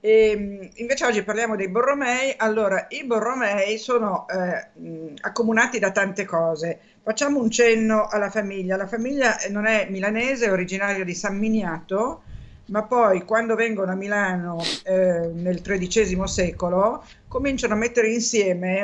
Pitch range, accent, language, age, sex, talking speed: 185-220 Hz, native, Italian, 50-69, female, 145 wpm